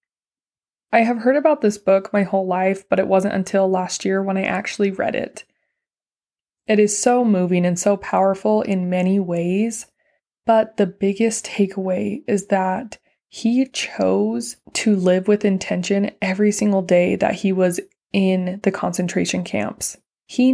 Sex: female